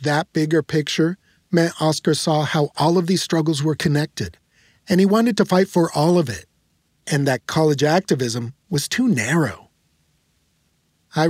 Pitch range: 145-170 Hz